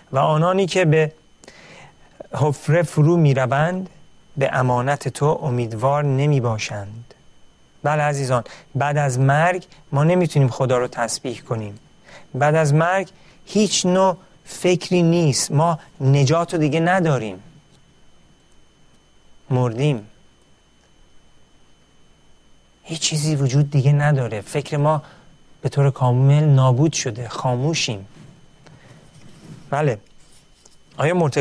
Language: Persian